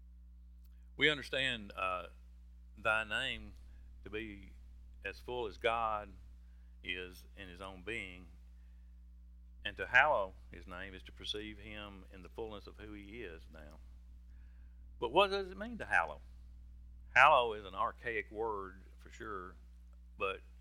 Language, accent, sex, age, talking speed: English, American, male, 50-69, 140 wpm